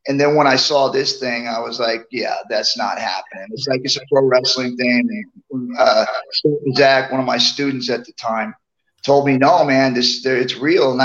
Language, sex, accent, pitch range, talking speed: English, male, American, 130-155 Hz, 205 wpm